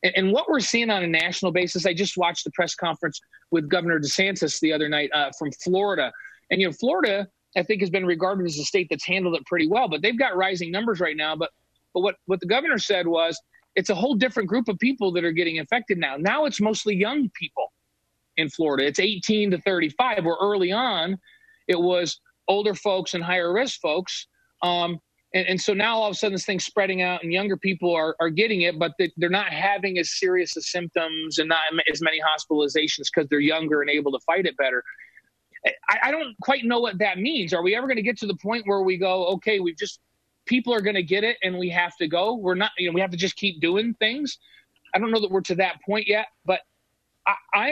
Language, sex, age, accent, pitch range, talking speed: English, male, 40-59, American, 170-210 Hz, 235 wpm